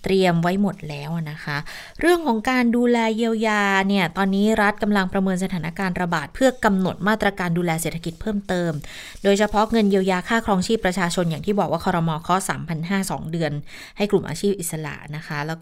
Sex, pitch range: female, 170-210 Hz